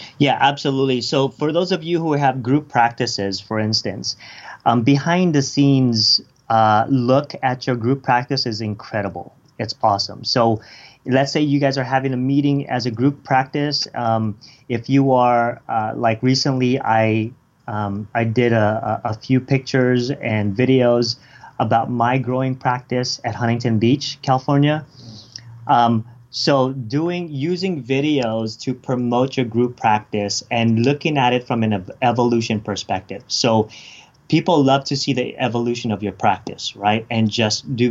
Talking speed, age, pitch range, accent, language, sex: 155 wpm, 30-49, 110-135 Hz, American, English, male